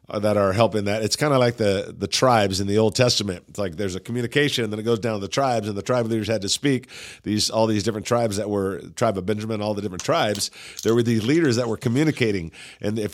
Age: 50-69